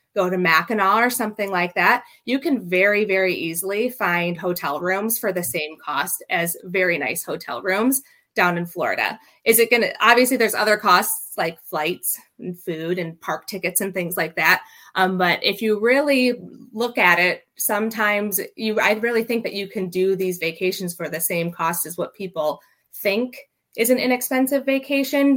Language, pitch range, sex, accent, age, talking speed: English, 170-210 Hz, female, American, 20-39, 180 wpm